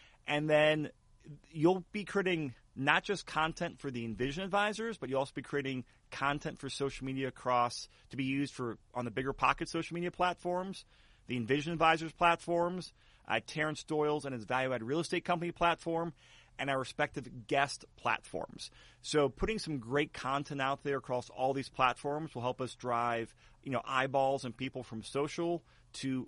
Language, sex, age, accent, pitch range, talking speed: English, male, 30-49, American, 125-160 Hz, 170 wpm